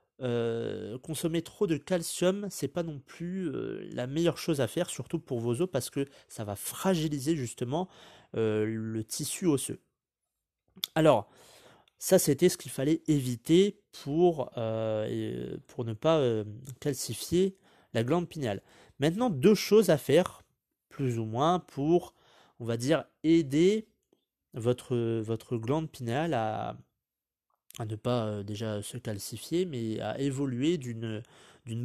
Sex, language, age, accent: male, French, 30-49, French